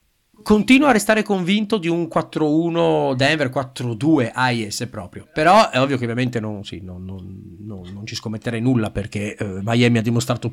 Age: 30-49